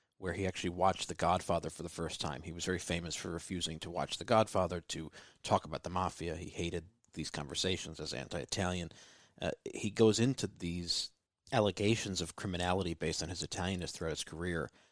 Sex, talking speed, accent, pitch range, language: male, 180 wpm, American, 85-110 Hz, English